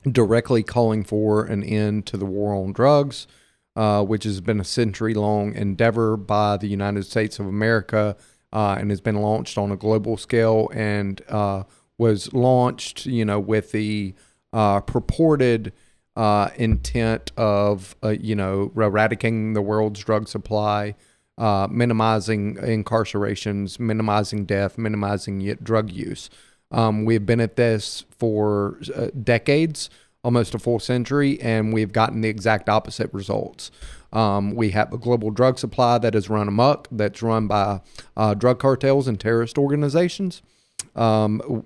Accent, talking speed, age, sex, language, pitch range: American, 145 wpm, 30-49, male, English, 105-115 Hz